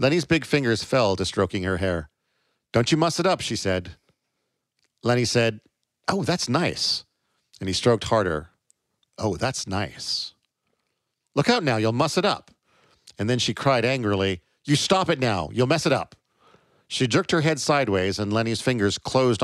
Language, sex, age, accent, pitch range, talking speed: English, male, 50-69, American, 105-140 Hz, 175 wpm